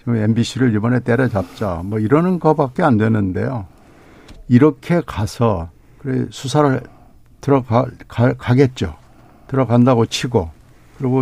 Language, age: Korean, 60-79